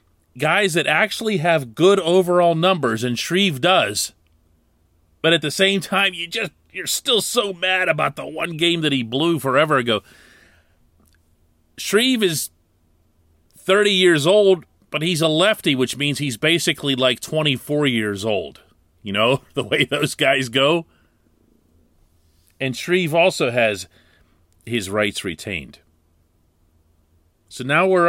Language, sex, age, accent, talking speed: English, male, 40-59, American, 140 wpm